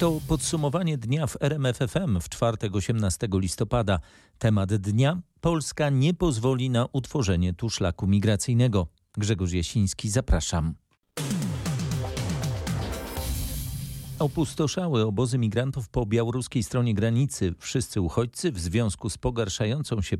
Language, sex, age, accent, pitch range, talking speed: Polish, male, 40-59, native, 95-125 Hz, 110 wpm